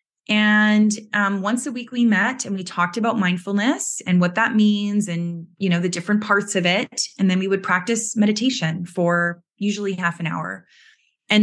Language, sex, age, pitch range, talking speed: English, female, 20-39, 170-210 Hz, 190 wpm